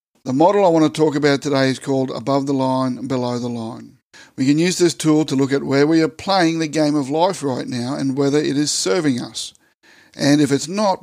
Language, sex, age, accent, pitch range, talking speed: English, male, 60-79, Australian, 135-160 Hz, 240 wpm